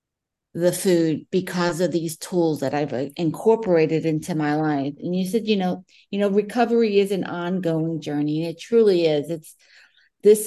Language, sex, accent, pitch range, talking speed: English, female, American, 165-200 Hz, 170 wpm